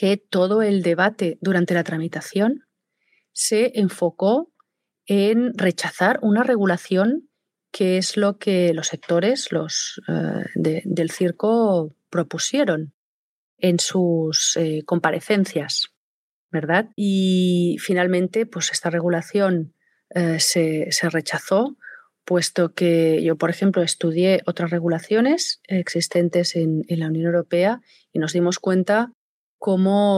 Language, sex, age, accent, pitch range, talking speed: Spanish, female, 30-49, Spanish, 170-200 Hz, 105 wpm